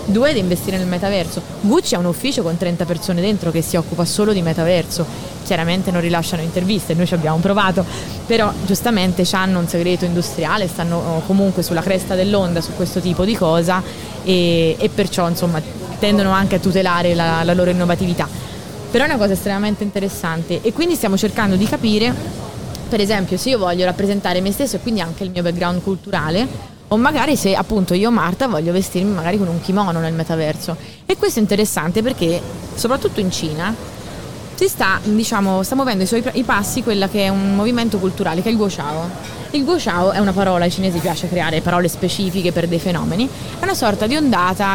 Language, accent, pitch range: Italian, native, 175-210 Hz